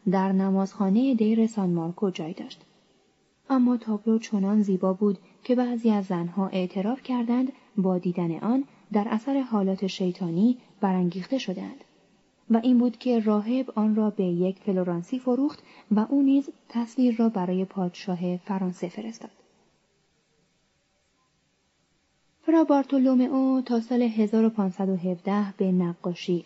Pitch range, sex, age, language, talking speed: 185-235 Hz, female, 30-49, Persian, 120 wpm